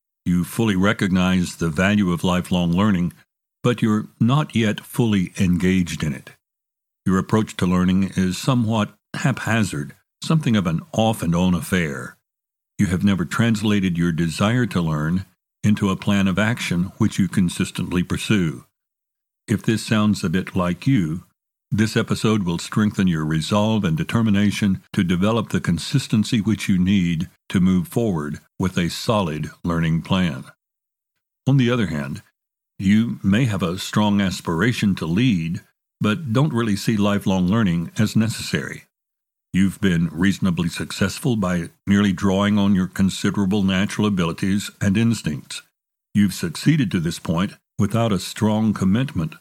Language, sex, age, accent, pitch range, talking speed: English, male, 60-79, American, 90-110 Hz, 145 wpm